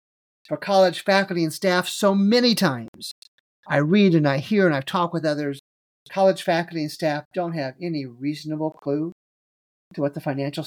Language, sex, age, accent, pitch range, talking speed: English, male, 40-59, American, 140-175 Hz, 175 wpm